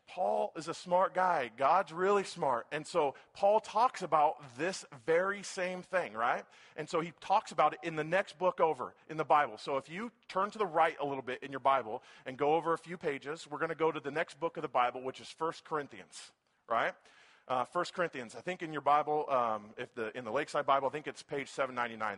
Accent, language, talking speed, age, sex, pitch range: American, English, 230 wpm, 40-59, male, 145-180 Hz